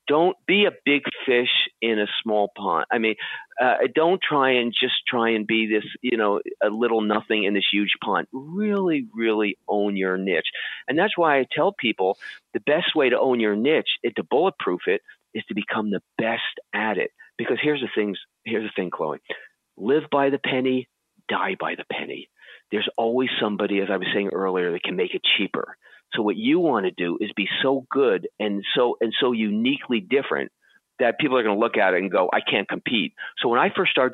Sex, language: male, English